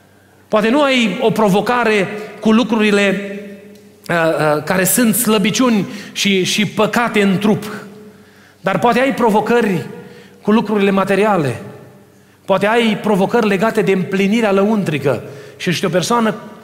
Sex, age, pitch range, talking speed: male, 30-49, 185-225 Hz, 125 wpm